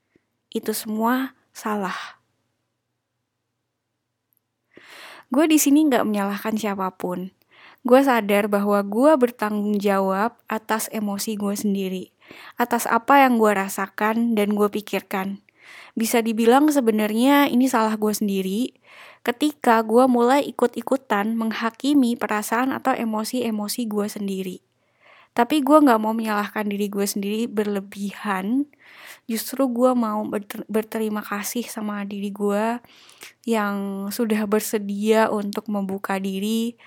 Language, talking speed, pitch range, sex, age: Indonesian, 105 wpm, 205-240 Hz, female, 20-39